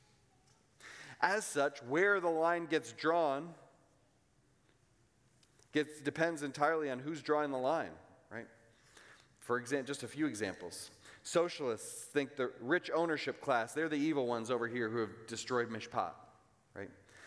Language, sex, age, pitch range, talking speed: English, male, 30-49, 125-160 Hz, 130 wpm